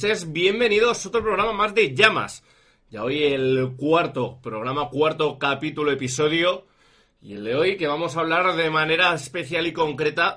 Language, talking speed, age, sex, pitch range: Spanish, 160 wpm, 30-49, male, 125-175 Hz